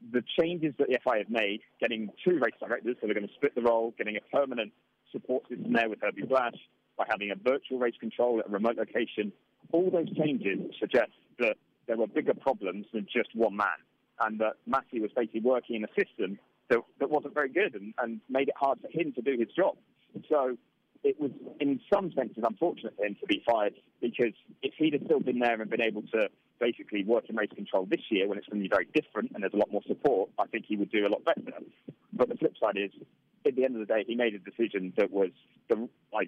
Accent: British